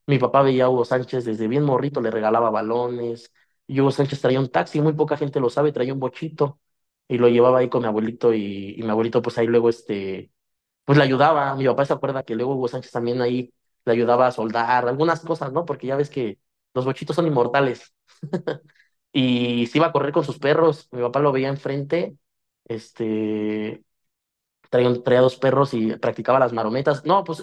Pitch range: 120-150 Hz